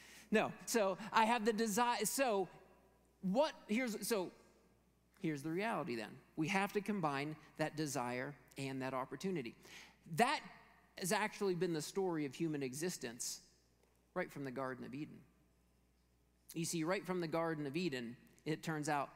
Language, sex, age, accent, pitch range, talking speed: English, male, 40-59, American, 125-170 Hz, 155 wpm